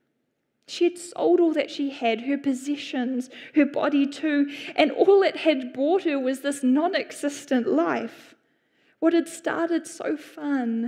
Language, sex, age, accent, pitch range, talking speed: English, female, 10-29, Australian, 245-310 Hz, 150 wpm